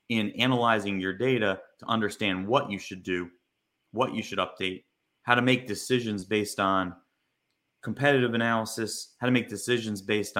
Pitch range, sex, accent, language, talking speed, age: 100-120 Hz, male, American, English, 155 wpm, 30-49